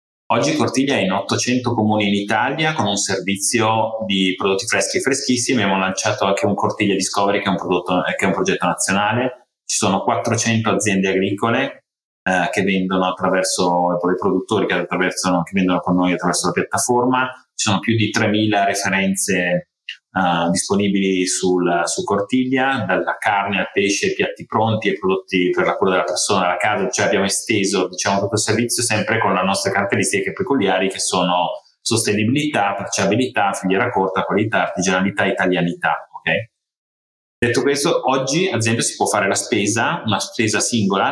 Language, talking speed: Italian, 170 wpm